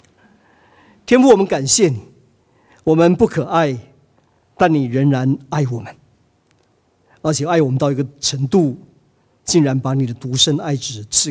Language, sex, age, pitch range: Chinese, male, 50-69, 120-150 Hz